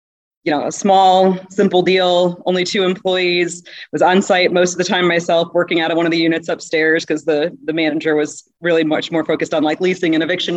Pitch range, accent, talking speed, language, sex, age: 155-175 Hz, American, 220 wpm, English, female, 30-49